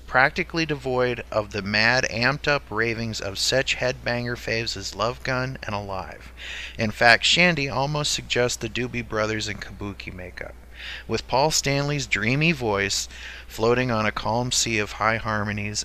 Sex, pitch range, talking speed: male, 105-135 Hz, 150 wpm